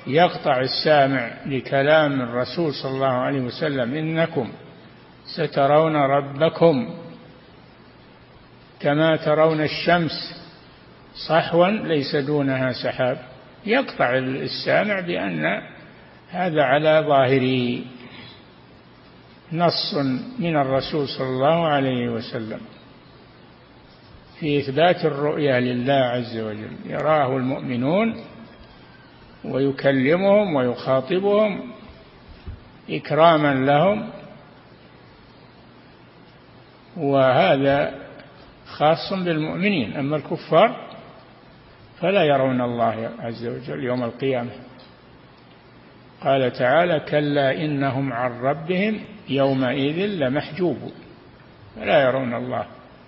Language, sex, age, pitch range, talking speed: Arabic, male, 60-79, 130-160 Hz, 75 wpm